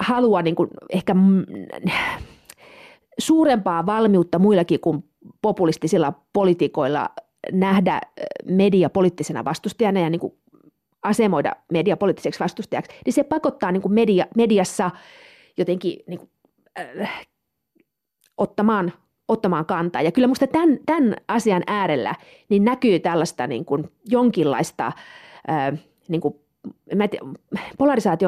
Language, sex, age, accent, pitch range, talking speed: Finnish, female, 30-49, native, 175-230 Hz, 110 wpm